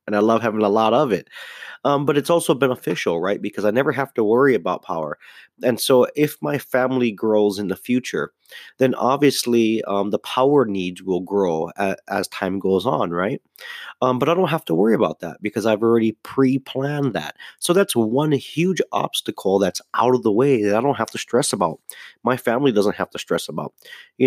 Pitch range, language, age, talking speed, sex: 100-130 Hz, English, 30-49, 205 wpm, male